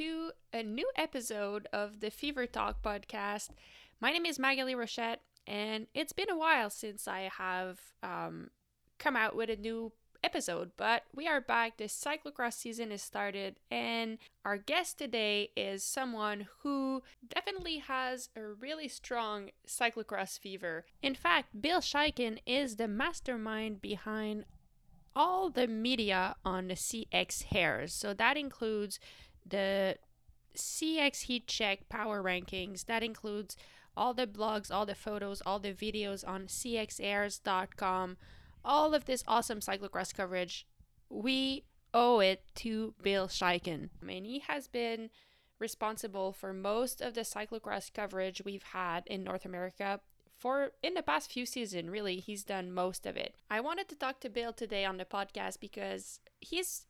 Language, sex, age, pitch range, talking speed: French, female, 10-29, 195-255 Hz, 150 wpm